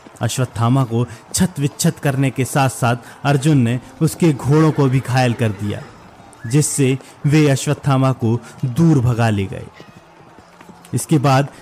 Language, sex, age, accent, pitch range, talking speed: Hindi, male, 30-49, native, 125-155 Hz, 140 wpm